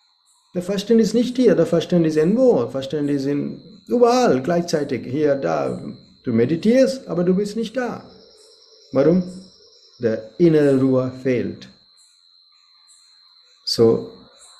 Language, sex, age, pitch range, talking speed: German, male, 50-69, 125-180 Hz, 120 wpm